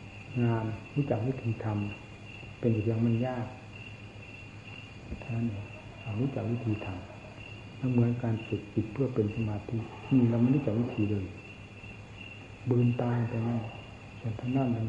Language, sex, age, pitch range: Thai, male, 60-79, 105-120 Hz